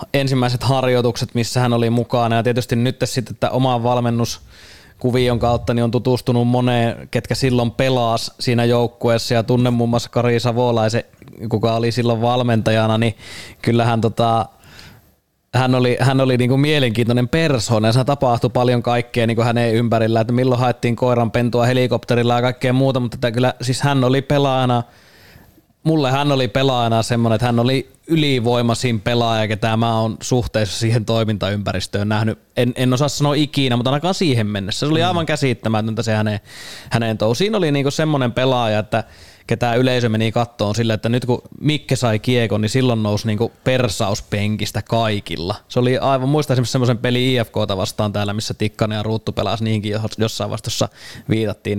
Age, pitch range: 20-39, 110-125 Hz